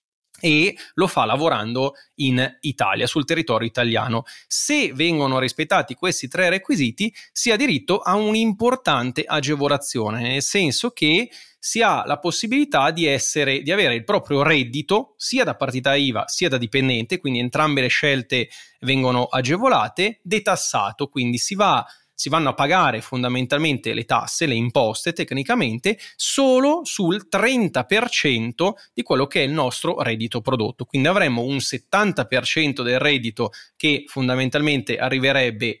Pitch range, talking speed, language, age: 125-180 Hz, 135 wpm, Italian, 30-49